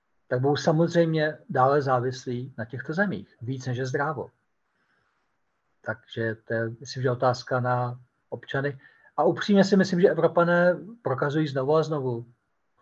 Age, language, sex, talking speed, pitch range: 50-69, Slovak, male, 140 wpm, 130-160 Hz